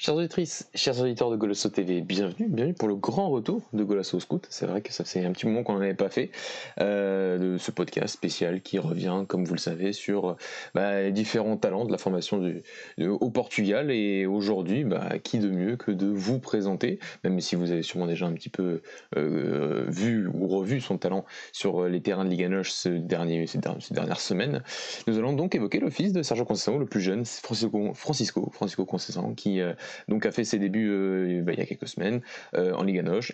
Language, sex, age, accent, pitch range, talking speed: French, male, 20-39, French, 90-105 Hz, 215 wpm